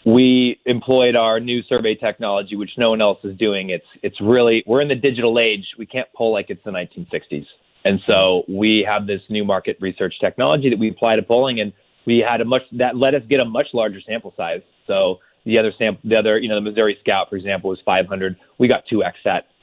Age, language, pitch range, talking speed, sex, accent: 30-49, English, 105-125 Hz, 225 wpm, male, American